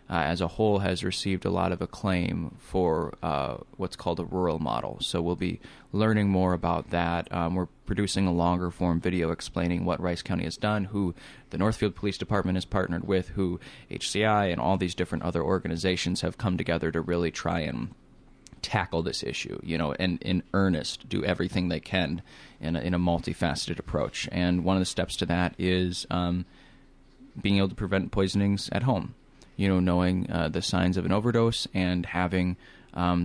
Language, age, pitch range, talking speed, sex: English, 20-39, 85-95 Hz, 190 wpm, male